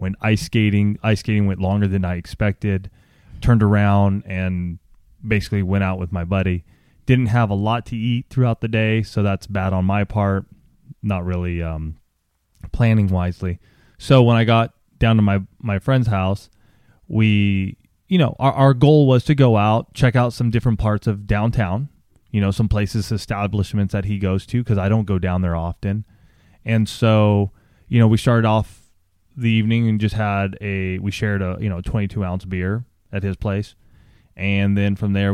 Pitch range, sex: 95-115 Hz, male